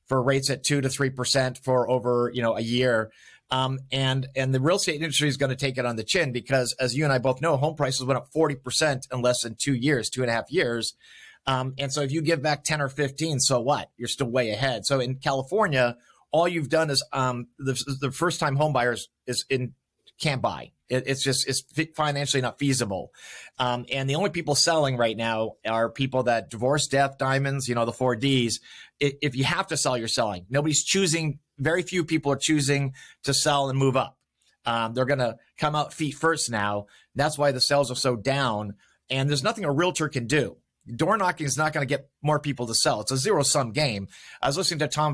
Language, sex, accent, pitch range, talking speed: English, male, American, 125-150 Hz, 230 wpm